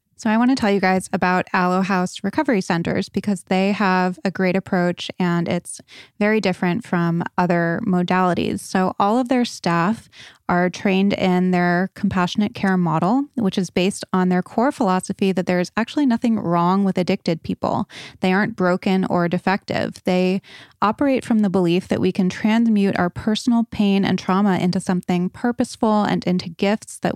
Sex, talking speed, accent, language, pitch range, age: female, 170 wpm, American, English, 180-210 Hz, 20-39